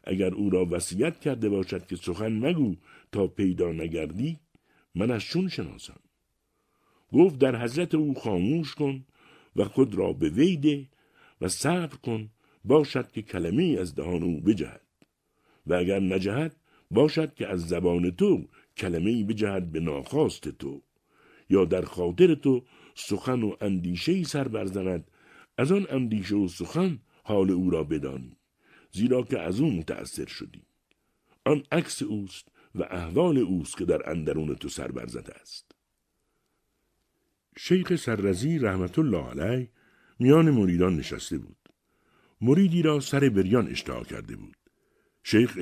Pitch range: 90-140 Hz